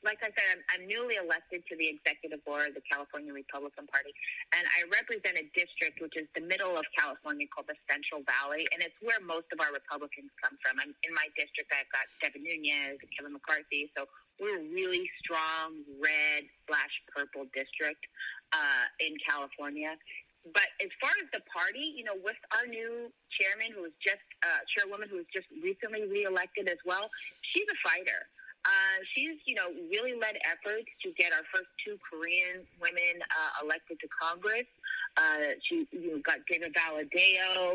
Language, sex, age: English, female, 30-49